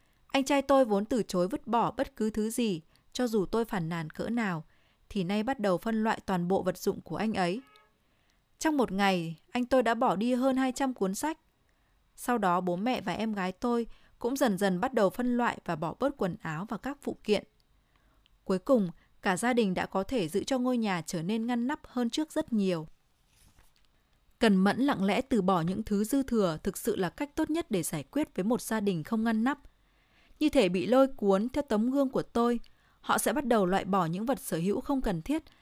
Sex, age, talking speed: female, 20-39, 230 wpm